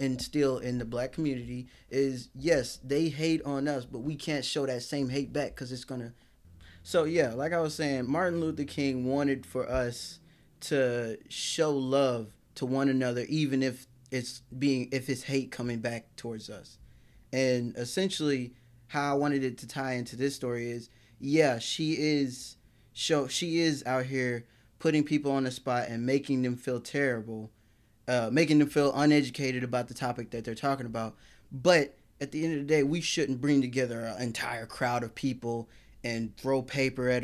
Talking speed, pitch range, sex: 185 wpm, 120-140 Hz, male